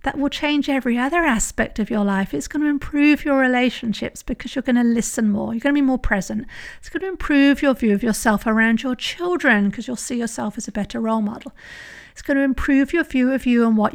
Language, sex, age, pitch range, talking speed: English, female, 50-69, 215-255 Hz, 245 wpm